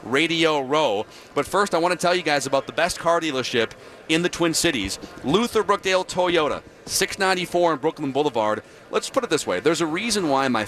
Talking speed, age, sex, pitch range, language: 200 wpm, 40-59, male, 130-165 Hz, English